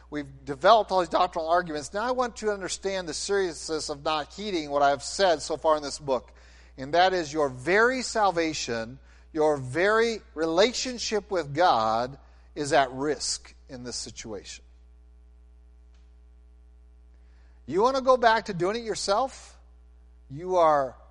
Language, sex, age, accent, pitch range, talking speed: English, male, 50-69, American, 125-195 Hz, 150 wpm